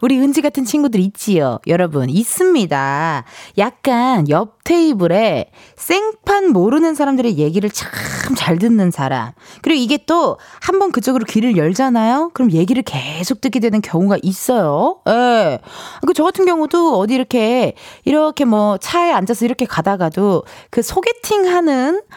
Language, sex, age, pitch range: Korean, female, 20-39, 180-295 Hz